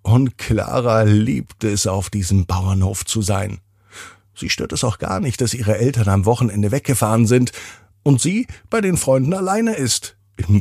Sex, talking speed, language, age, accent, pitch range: male, 170 wpm, German, 50-69, German, 95-115 Hz